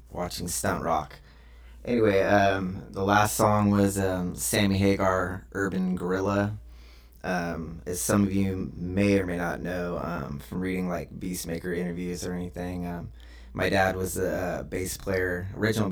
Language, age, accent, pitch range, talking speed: English, 20-39, American, 85-95 Hz, 150 wpm